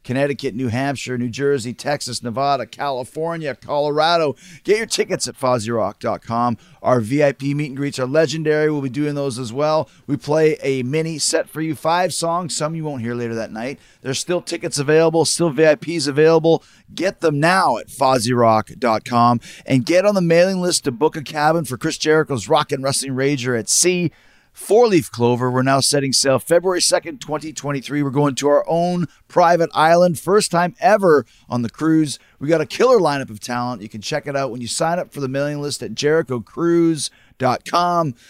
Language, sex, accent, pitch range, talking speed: English, male, American, 130-160 Hz, 185 wpm